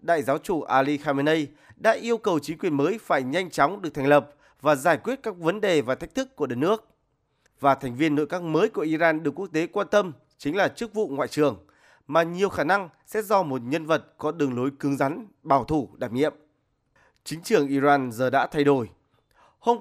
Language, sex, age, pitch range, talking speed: Vietnamese, male, 20-39, 145-200 Hz, 225 wpm